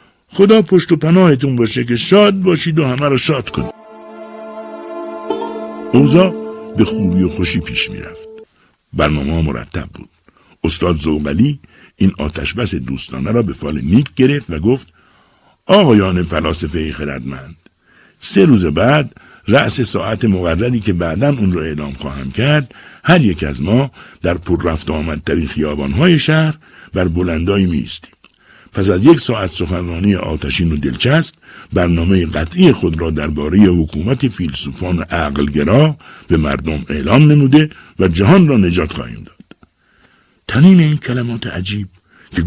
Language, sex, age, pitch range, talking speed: Persian, male, 60-79, 80-130 Hz, 135 wpm